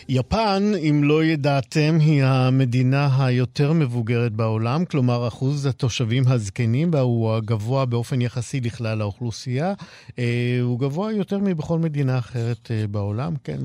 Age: 50-69